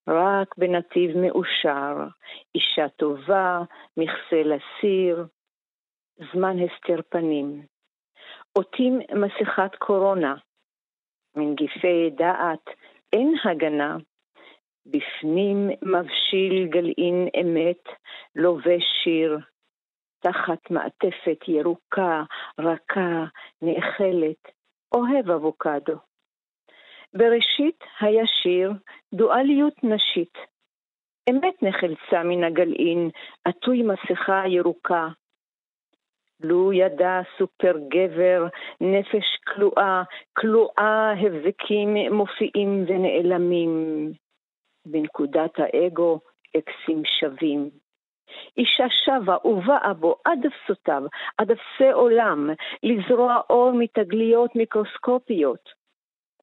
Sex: female